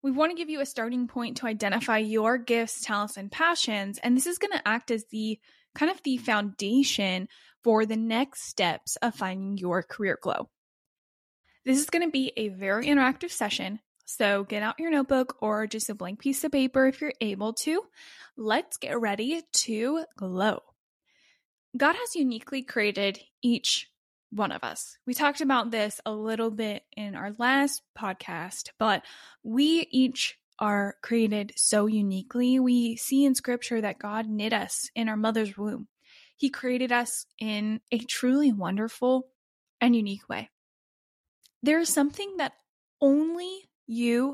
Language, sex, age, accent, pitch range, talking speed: English, female, 10-29, American, 215-275 Hz, 160 wpm